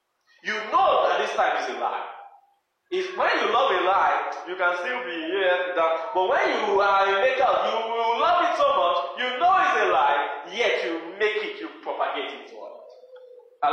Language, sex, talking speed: English, male, 210 wpm